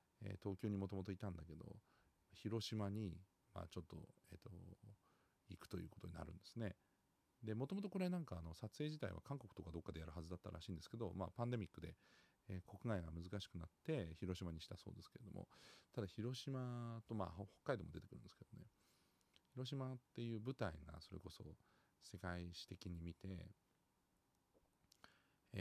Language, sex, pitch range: Japanese, male, 85-105 Hz